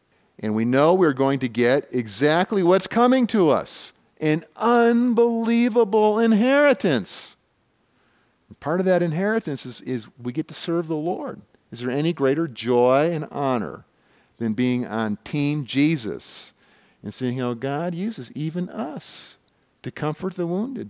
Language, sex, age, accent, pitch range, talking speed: English, male, 50-69, American, 135-200 Hz, 145 wpm